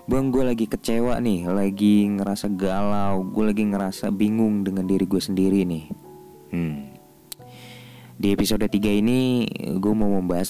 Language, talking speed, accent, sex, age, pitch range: Indonesian, 135 wpm, native, male, 20-39, 85-110 Hz